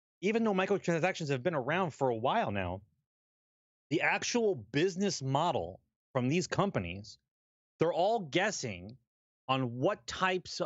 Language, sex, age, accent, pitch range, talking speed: English, male, 30-49, American, 130-190 Hz, 130 wpm